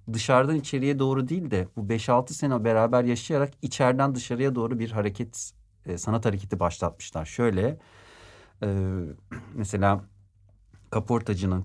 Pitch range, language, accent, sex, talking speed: 95-115 Hz, Turkish, native, male, 115 wpm